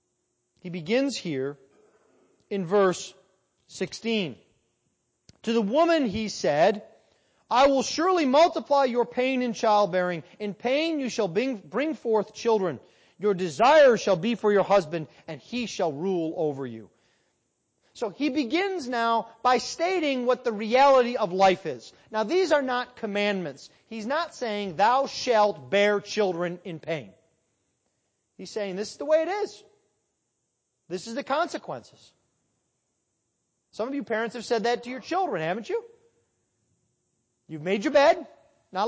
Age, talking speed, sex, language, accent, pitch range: 40-59, 145 wpm, male, English, American, 200-275 Hz